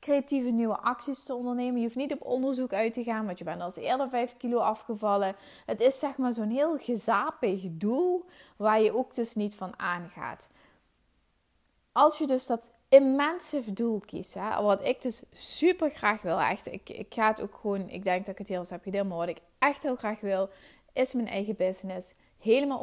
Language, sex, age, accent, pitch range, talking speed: Dutch, female, 20-39, Dutch, 190-245 Hz, 205 wpm